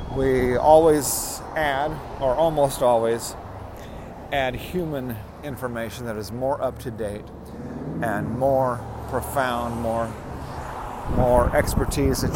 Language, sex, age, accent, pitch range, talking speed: English, male, 50-69, American, 110-125 Hz, 95 wpm